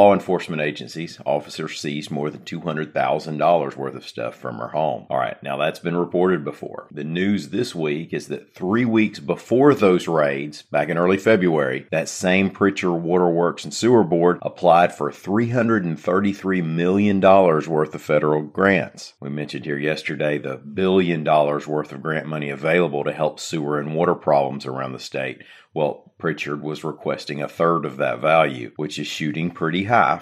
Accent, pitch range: American, 75-90 Hz